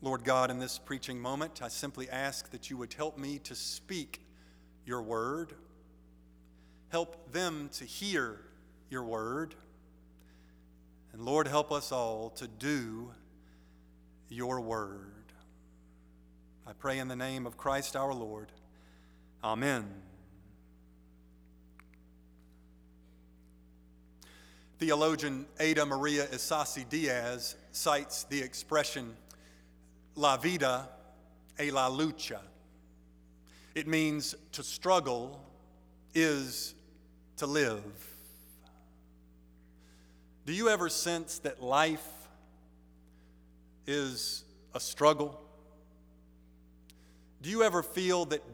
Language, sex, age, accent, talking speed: English, male, 40-59, American, 95 wpm